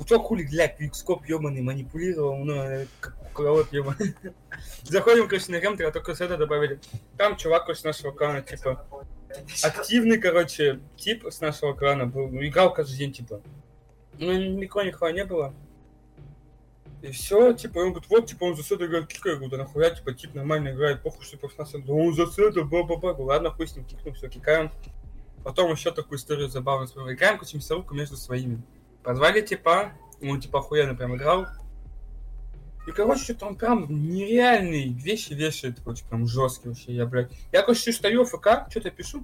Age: 20-39